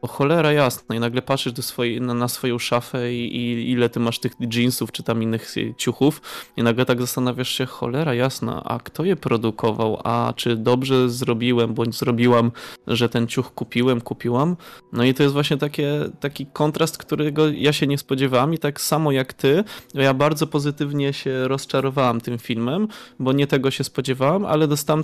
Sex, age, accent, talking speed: male, 20-39, native, 180 wpm